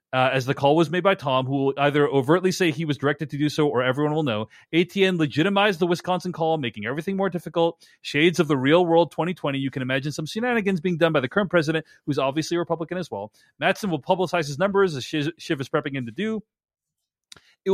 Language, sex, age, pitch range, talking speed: English, male, 30-49, 140-180 Hz, 225 wpm